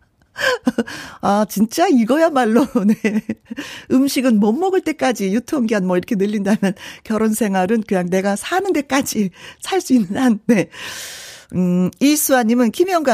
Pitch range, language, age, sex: 180-260 Hz, Korean, 40-59, female